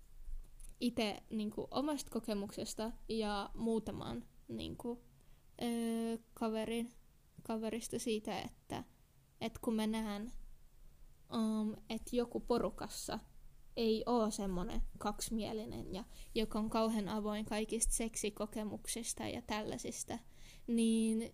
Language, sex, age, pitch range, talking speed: Finnish, female, 20-39, 215-240 Hz, 100 wpm